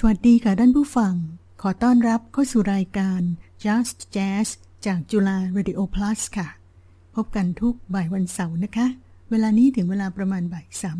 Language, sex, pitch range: Thai, female, 180-215 Hz